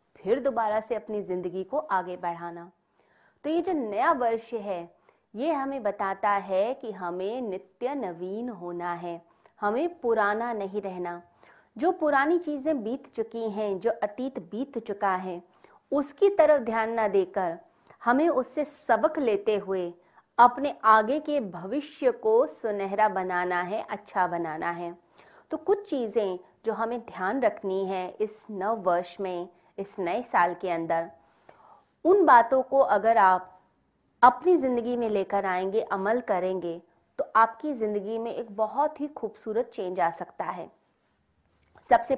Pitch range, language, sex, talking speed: 185-260 Hz, Hindi, female, 150 wpm